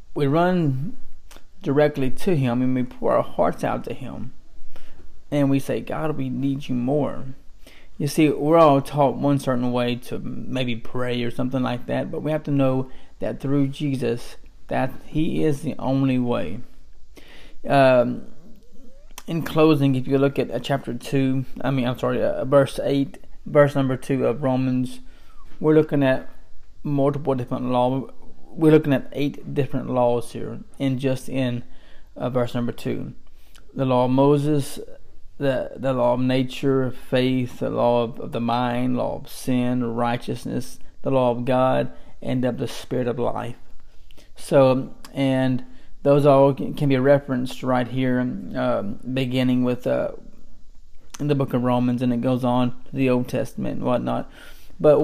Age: 20-39